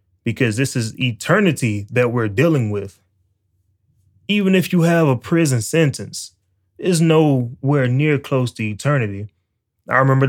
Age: 20-39